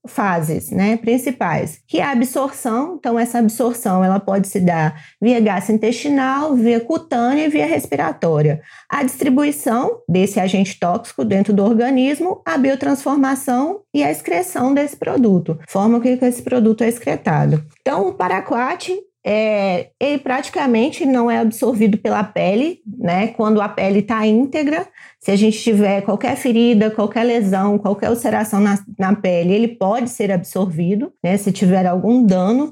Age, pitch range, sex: 20-39, 200-260 Hz, female